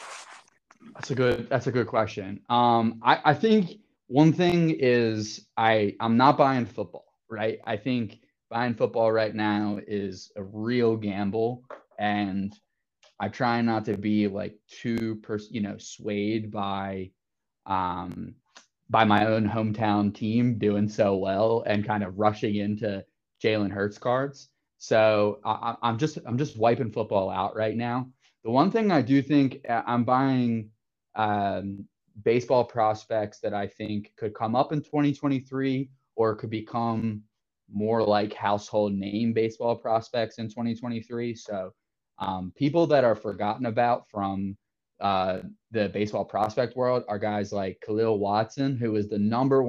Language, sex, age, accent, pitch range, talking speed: English, male, 20-39, American, 105-120 Hz, 150 wpm